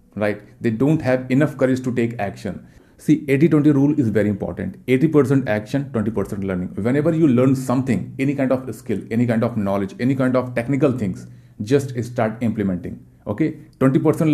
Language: Hindi